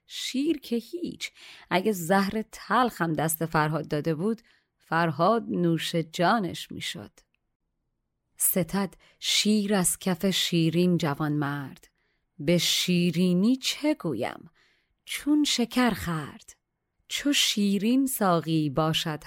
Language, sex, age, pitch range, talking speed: Persian, female, 30-49, 170-245 Hz, 100 wpm